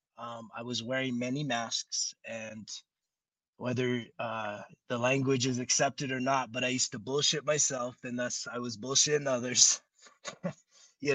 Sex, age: male, 20-39